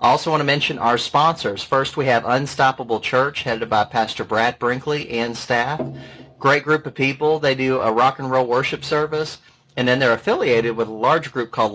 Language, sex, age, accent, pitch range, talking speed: English, male, 30-49, American, 120-145 Hz, 205 wpm